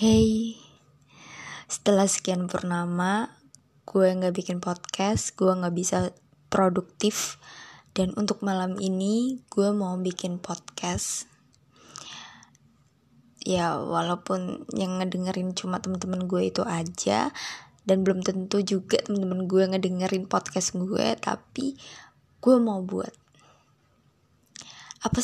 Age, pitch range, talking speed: 20-39, 175-200 Hz, 100 wpm